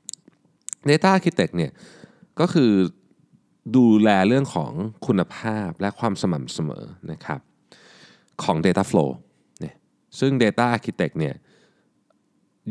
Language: Thai